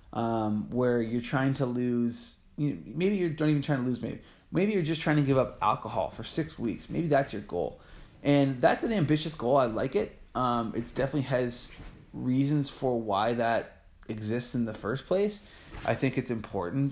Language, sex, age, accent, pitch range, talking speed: English, male, 20-39, American, 110-145 Hz, 200 wpm